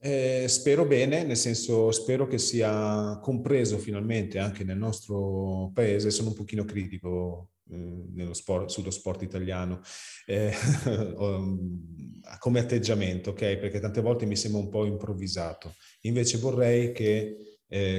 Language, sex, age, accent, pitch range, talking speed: Italian, male, 40-59, native, 90-110 Hz, 135 wpm